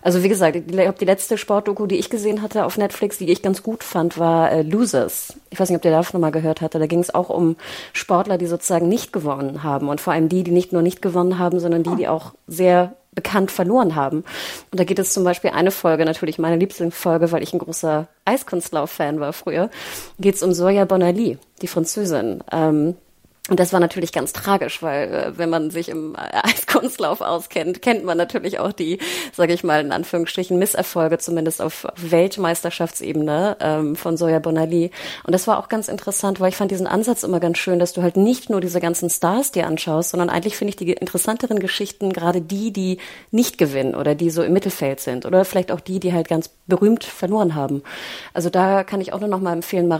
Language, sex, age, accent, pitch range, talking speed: German, female, 30-49, German, 165-195 Hz, 215 wpm